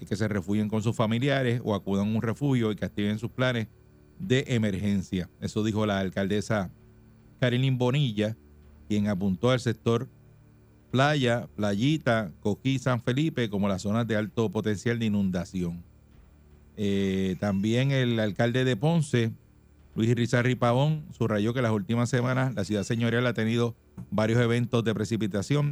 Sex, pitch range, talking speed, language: male, 100-120 Hz, 150 wpm, Spanish